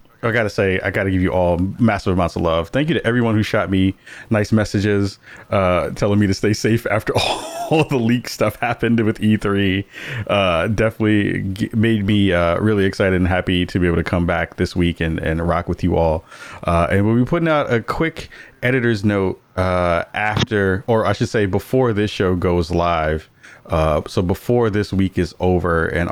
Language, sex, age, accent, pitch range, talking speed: English, male, 30-49, American, 90-110 Hz, 200 wpm